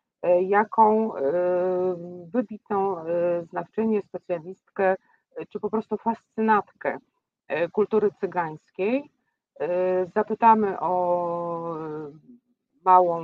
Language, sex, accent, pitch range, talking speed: Polish, female, native, 175-205 Hz, 60 wpm